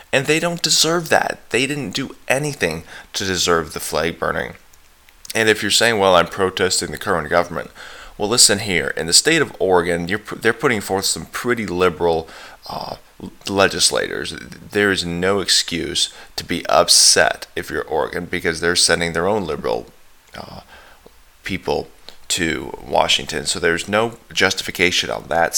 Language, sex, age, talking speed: English, male, 20-39, 155 wpm